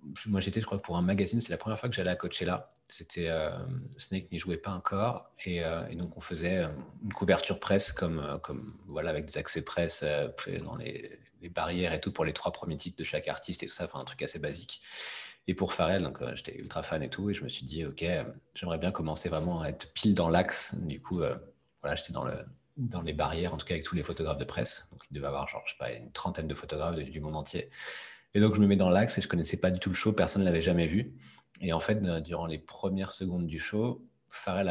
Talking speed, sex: 260 wpm, male